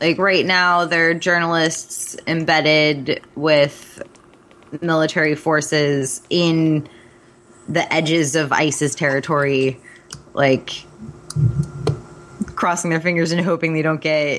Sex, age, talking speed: female, 20-39, 105 wpm